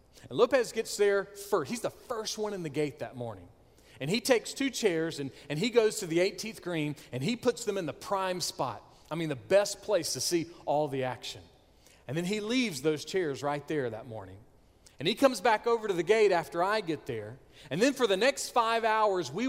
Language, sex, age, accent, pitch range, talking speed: English, male, 40-59, American, 140-210 Hz, 230 wpm